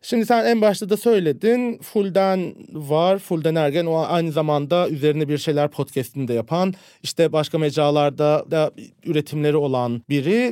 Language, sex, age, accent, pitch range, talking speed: Turkish, male, 40-59, native, 155-195 Hz, 145 wpm